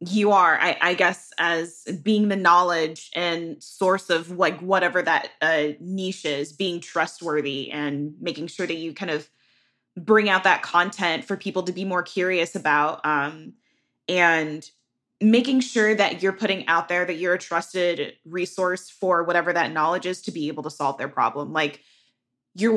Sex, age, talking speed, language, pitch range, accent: female, 20-39, 175 wpm, English, 165-190 Hz, American